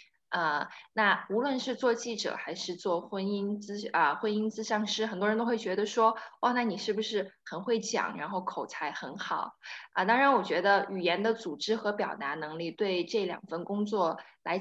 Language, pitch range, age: Chinese, 195-245 Hz, 20-39